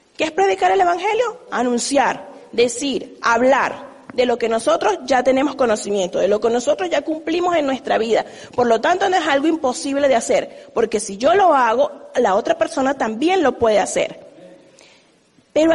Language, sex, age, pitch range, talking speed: English, female, 40-59, 245-340 Hz, 175 wpm